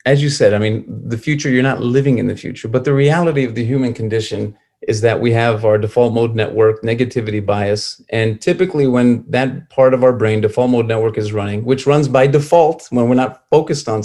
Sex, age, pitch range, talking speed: male, 40-59, 115-145 Hz, 220 wpm